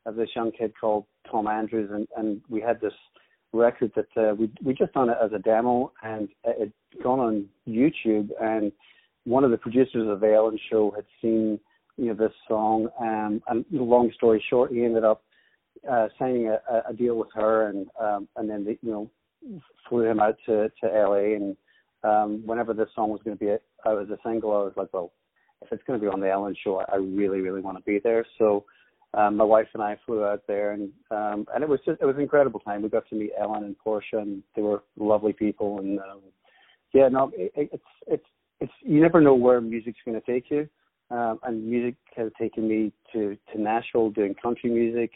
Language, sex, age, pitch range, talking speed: English, male, 40-59, 105-115 Hz, 220 wpm